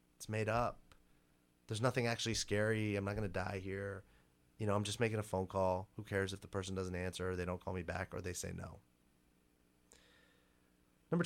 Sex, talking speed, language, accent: male, 210 wpm, English, American